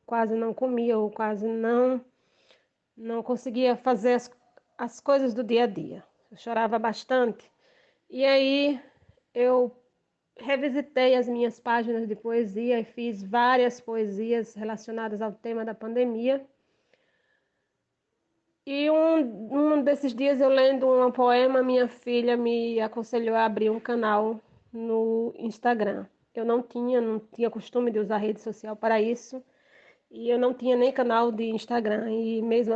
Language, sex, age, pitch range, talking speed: Portuguese, female, 20-39, 220-255 Hz, 145 wpm